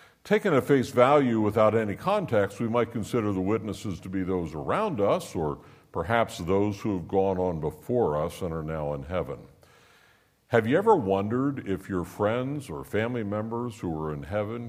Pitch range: 95-120 Hz